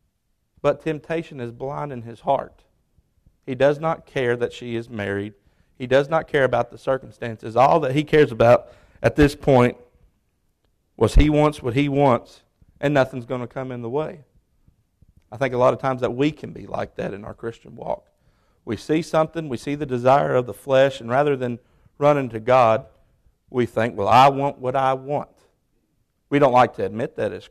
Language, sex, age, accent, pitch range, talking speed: English, male, 50-69, American, 110-140 Hz, 200 wpm